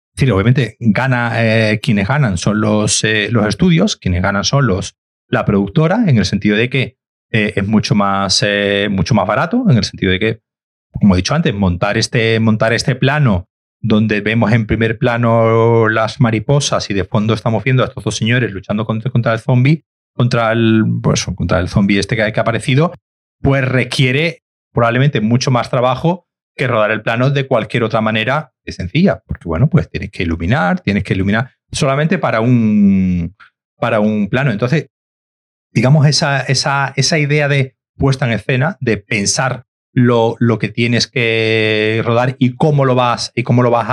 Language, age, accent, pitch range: Spanish, 30-49, Spanish, 105-130 Hz